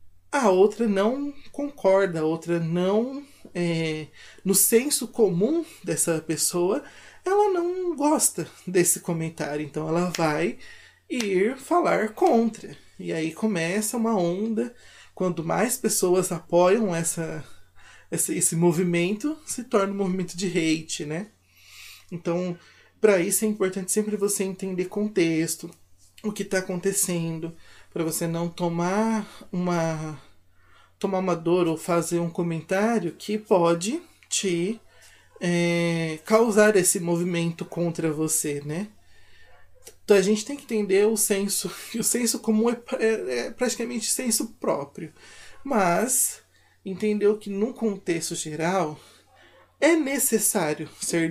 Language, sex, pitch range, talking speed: Portuguese, male, 165-215 Hz, 125 wpm